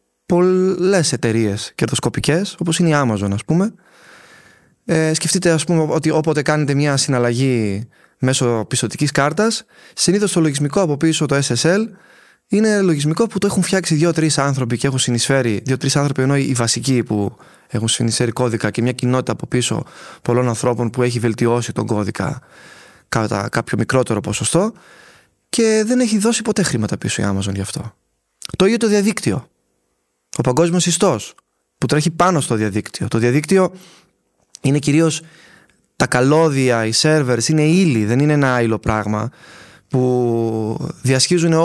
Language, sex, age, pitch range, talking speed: Greek, male, 20-39, 115-175 Hz, 150 wpm